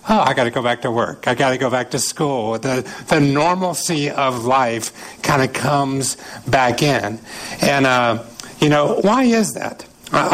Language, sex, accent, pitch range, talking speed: English, male, American, 140-175 Hz, 190 wpm